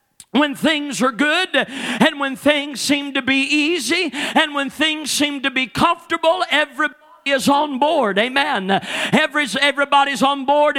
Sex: male